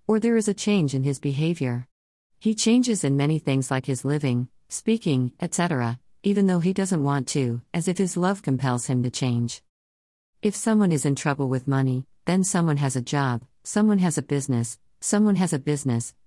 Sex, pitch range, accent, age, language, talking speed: female, 130-180 Hz, American, 50-69, Hindi, 190 wpm